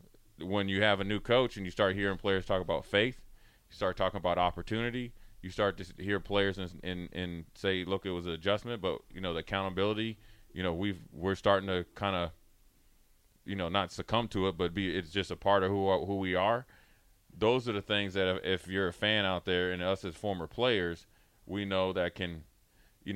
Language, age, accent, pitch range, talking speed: English, 30-49, American, 90-105 Hz, 225 wpm